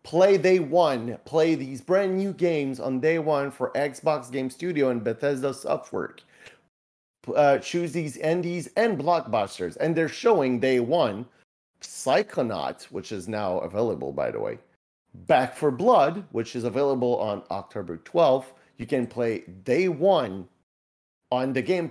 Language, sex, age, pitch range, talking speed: English, male, 40-59, 120-170 Hz, 150 wpm